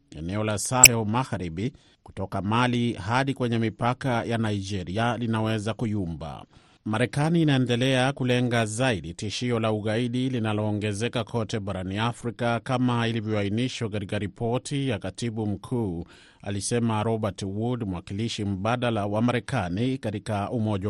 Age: 30-49